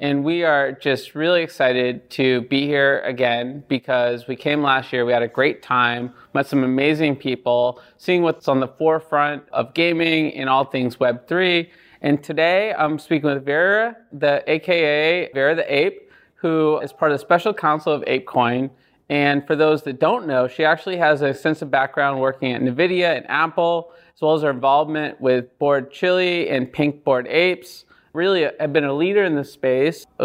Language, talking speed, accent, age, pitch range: English, 185 wpm, American, 30-49, 130-160 Hz